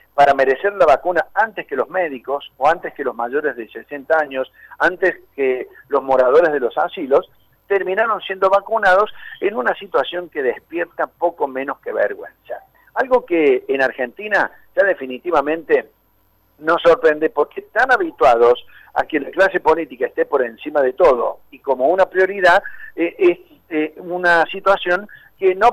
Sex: male